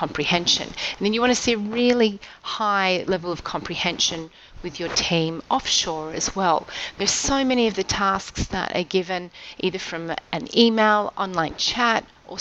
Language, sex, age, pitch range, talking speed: English, female, 30-49, 165-215 Hz, 170 wpm